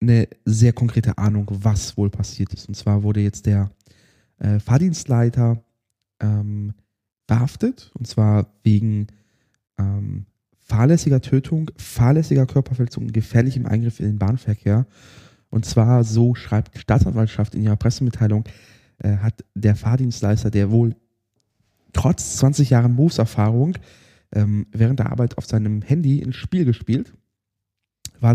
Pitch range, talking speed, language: 105-130 Hz, 125 wpm, German